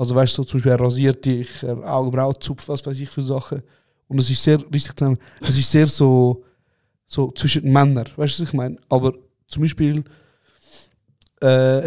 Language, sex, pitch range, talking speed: German, male, 130-145 Hz, 195 wpm